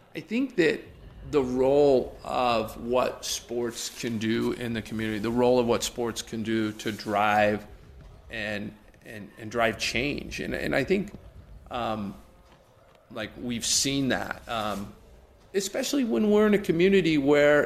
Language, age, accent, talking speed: English, 40-59, American, 150 wpm